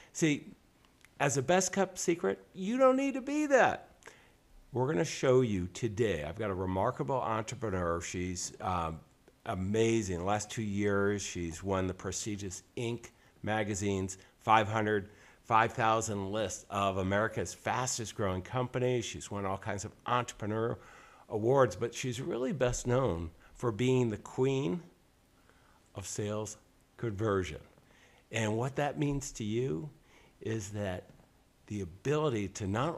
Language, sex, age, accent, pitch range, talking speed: English, male, 50-69, American, 95-130 Hz, 135 wpm